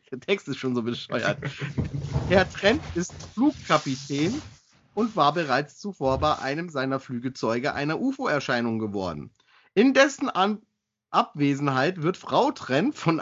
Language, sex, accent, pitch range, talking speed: German, male, German, 135-205 Hz, 125 wpm